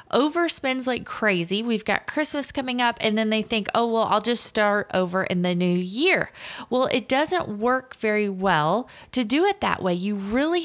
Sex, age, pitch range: female, 30-49, 195-255 Hz